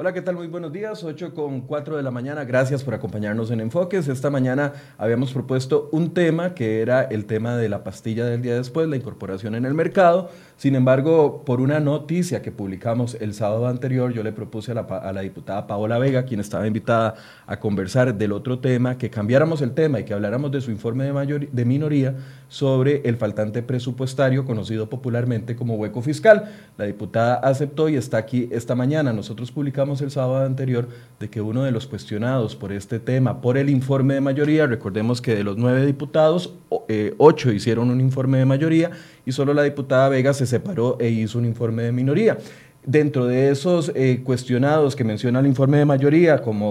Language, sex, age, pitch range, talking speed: Spanish, male, 30-49, 115-145 Hz, 195 wpm